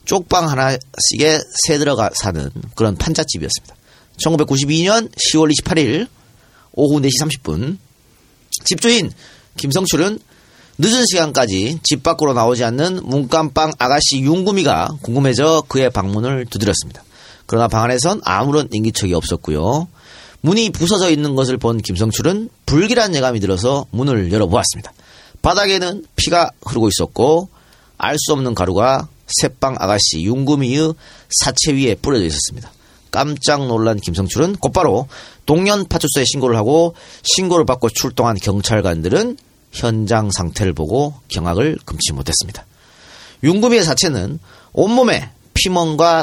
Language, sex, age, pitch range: Korean, male, 40-59, 110-155 Hz